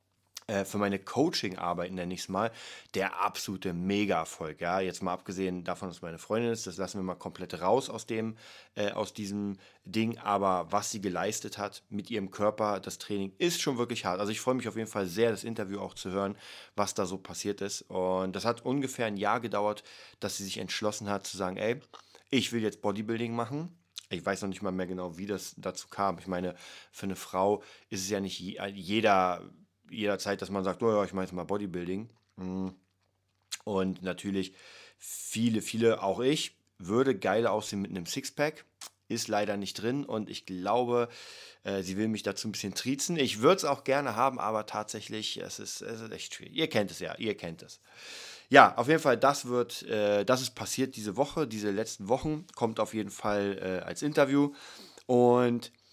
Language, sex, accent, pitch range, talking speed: German, male, German, 95-115 Hz, 195 wpm